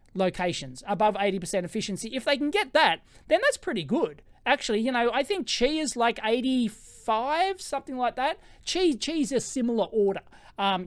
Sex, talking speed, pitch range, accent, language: male, 190 wpm, 185-250 Hz, Australian, English